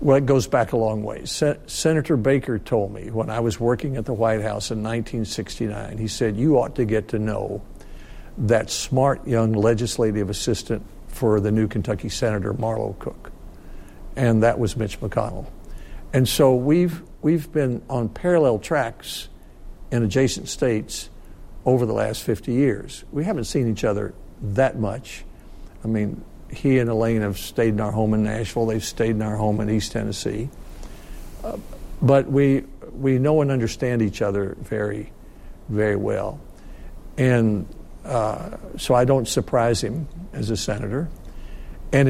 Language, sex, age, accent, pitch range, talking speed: English, male, 60-79, American, 110-130 Hz, 160 wpm